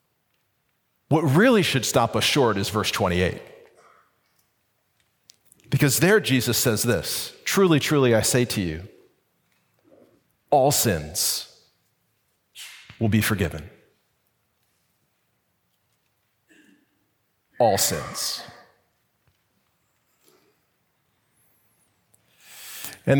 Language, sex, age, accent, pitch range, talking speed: English, male, 40-59, American, 115-155 Hz, 70 wpm